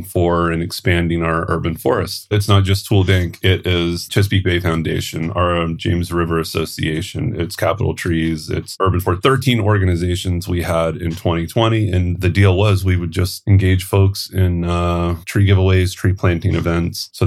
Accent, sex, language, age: American, male, English, 30-49